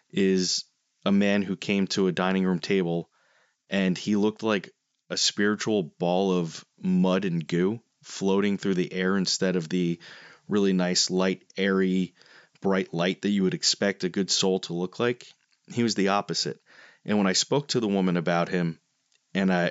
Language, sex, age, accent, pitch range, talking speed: English, male, 30-49, American, 90-100 Hz, 175 wpm